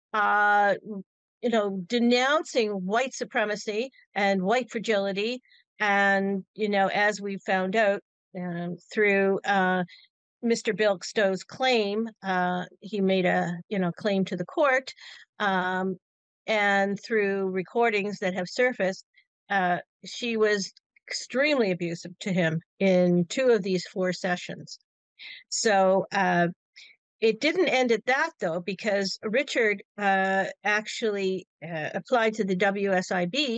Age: 50-69